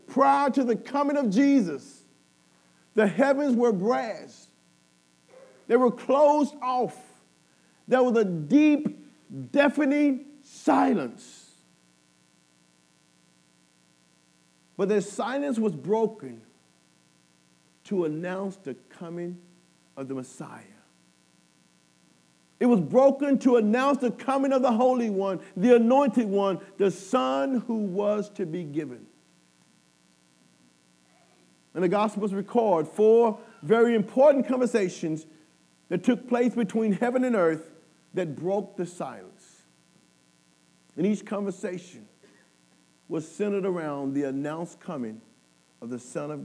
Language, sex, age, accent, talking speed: English, male, 50-69, American, 110 wpm